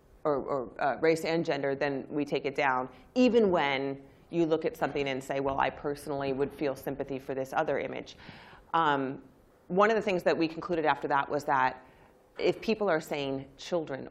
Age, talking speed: 30-49, 195 wpm